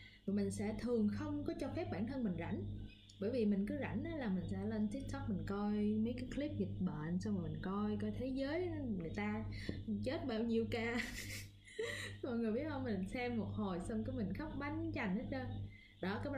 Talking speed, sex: 225 wpm, female